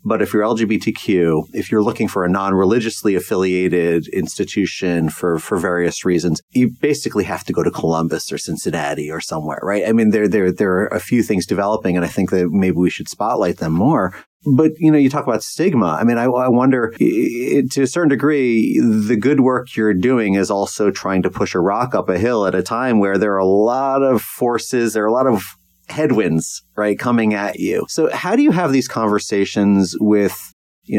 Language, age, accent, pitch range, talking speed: English, 30-49, American, 100-125 Hz, 210 wpm